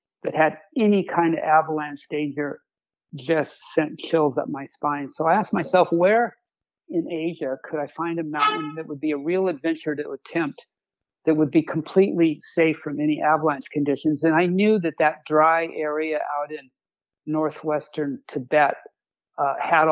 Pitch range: 145-165 Hz